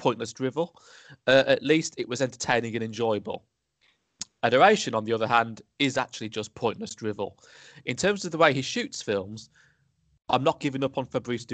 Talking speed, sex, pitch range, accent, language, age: 175 wpm, male, 110-135 Hz, British, English, 20-39